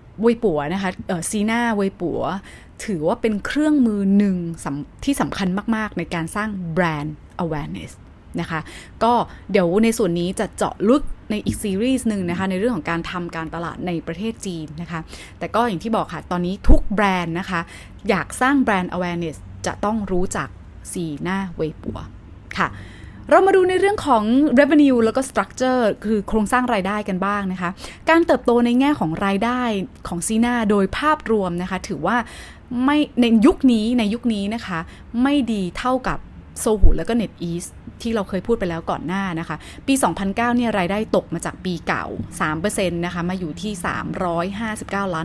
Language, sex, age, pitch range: Thai, female, 20-39, 175-235 Hz